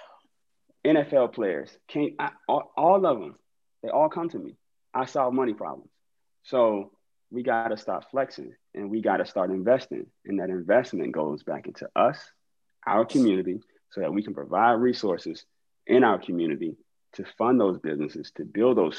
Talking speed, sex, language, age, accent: 165 wpm, male, English, 30-49, American